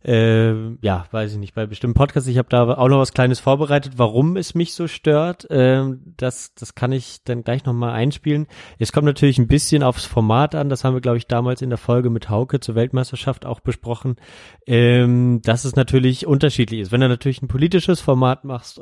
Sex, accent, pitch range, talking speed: male, German, 120-135 Hz, 210 wpm